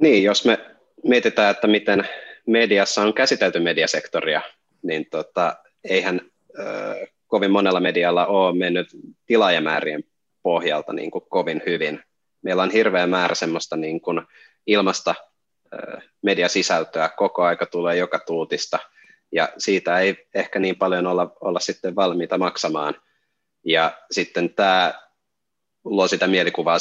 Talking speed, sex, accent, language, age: 125 wpm, male, native, Finnish, 30-49